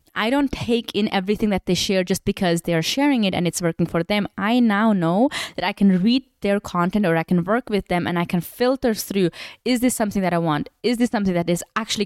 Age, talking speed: 20-39, 255 wpm